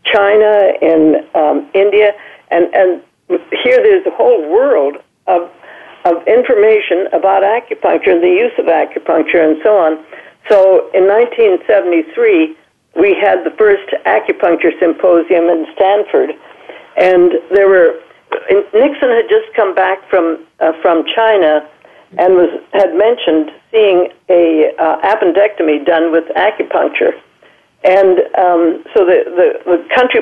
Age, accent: 60-79, American